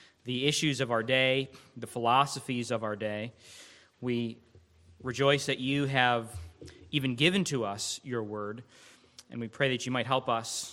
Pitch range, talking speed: 120-165 Hz, 160 wpm